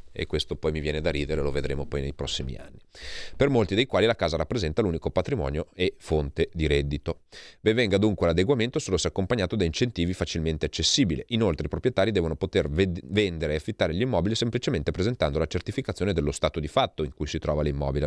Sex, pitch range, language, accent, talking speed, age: male, 70-90 Hz, Italian, native, 200 wpm, 30-49